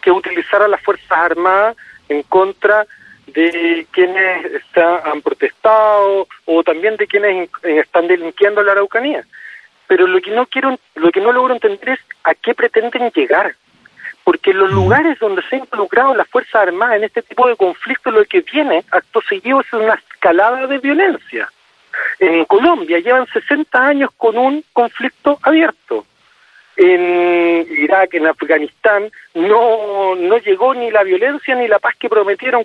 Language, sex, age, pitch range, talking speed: Spanish, male, 50-69, 195-305 Hz, 155 wpm